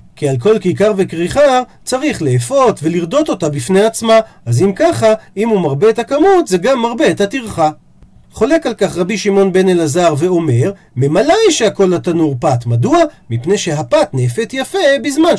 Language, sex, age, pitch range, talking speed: Hebrew, male, 40-59, 165-240 Hz, 165 wpm